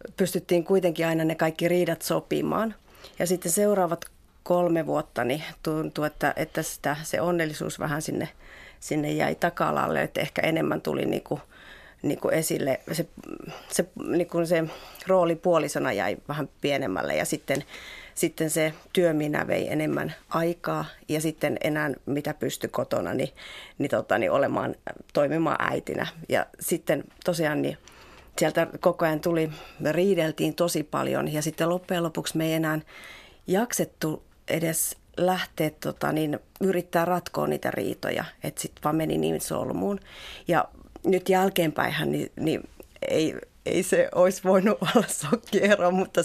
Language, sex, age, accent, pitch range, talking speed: Finnish, female, 30-49, native, 155-180 Hz, 140 wpm